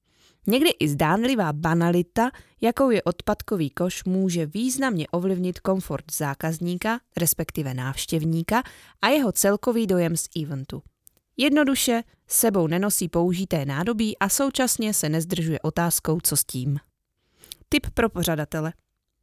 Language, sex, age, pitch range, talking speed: Czech, female, 20-39, 160-215 Hz, 115 wpm